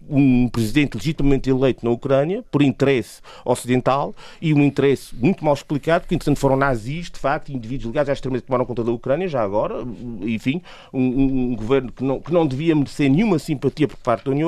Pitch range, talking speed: 135-185 Hz, 195 wpm